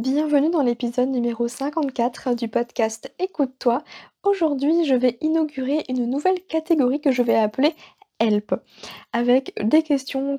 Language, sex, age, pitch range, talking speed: French, female, 20-39, 235-290 Hz, 135 wpm